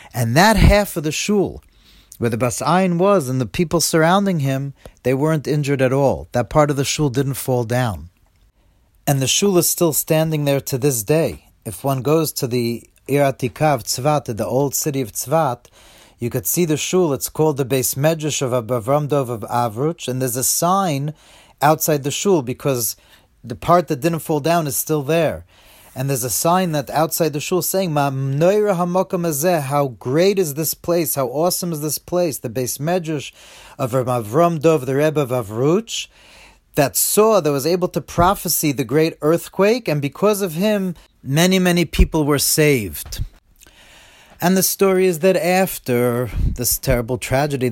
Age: 40-59